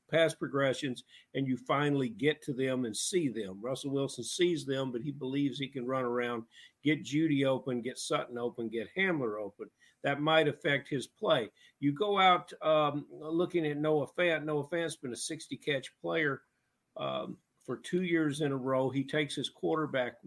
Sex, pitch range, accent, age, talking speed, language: male, 130-155 Hz, American, 50-69, 185 wpm, English